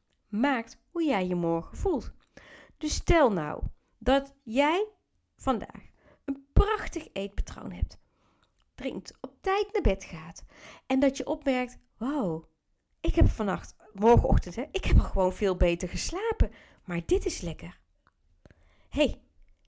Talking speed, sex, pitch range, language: 130 wpm, female, 190-290 Hz, Dutch